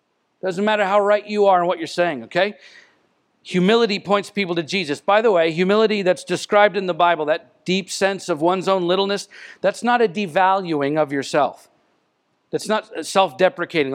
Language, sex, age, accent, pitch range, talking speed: English, male, 50-69, American, 185-225 Hz, 175 wpm